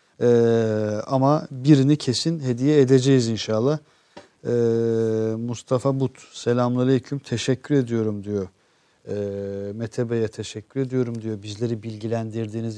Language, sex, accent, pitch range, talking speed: Turkish, male, native, 115-140 Hz, 110 wpm